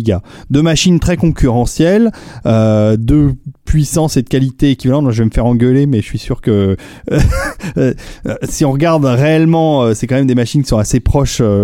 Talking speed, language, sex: 175 wpm, French, male